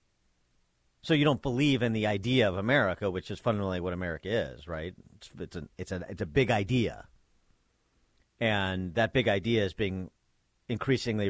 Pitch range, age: 90-110 Hz, 50-69